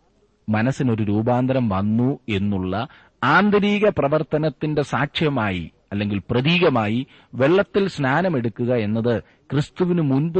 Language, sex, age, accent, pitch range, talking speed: Malayalam, male, 30-49, native, 100-140 Hz, 80 wpm